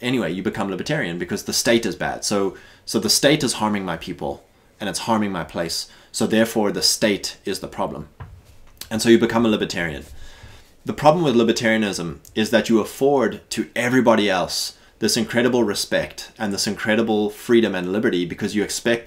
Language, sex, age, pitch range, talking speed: English, male, 20-39, 90-115 Hz, 185 wpm